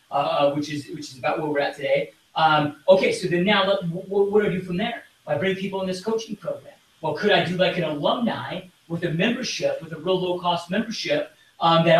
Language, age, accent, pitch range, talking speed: English, 40-59, American, 160-185 Hz, 230 wpm